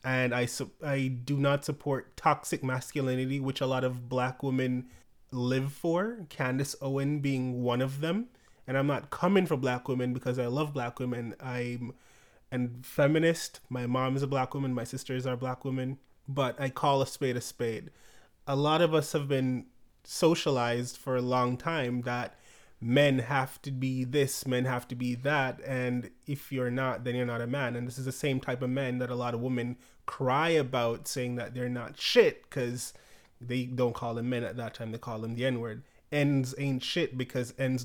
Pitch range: 125-140 Hz